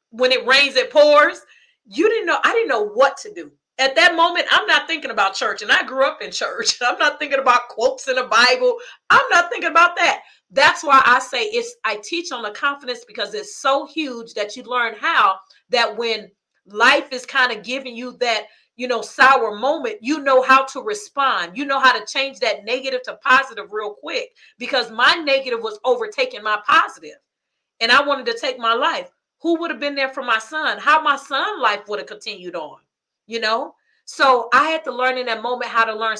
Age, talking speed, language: 40-59, 220 wpm, English